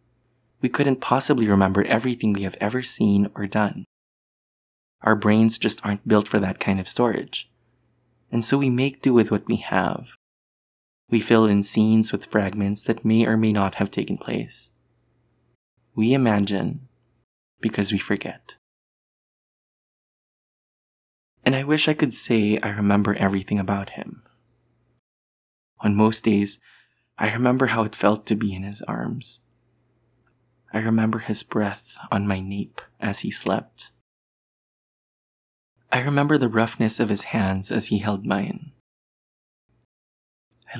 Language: English